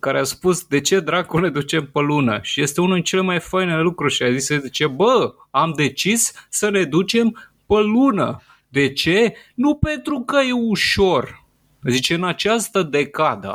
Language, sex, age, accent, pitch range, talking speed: Romanian, male, 30-49, native, 145-220 Hz, 175 wpm